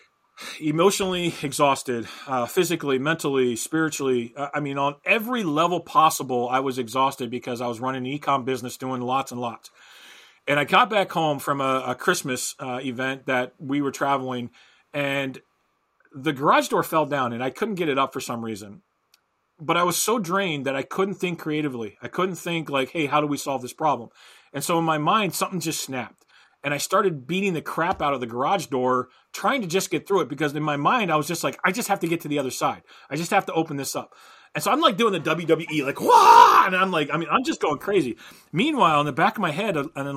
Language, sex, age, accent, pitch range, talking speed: English, male, 40-59, American, 135-185 Hz, 230 wpm